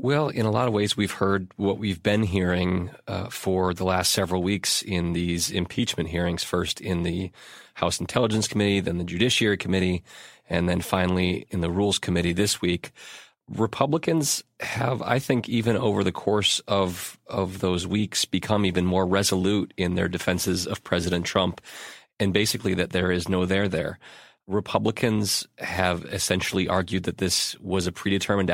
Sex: male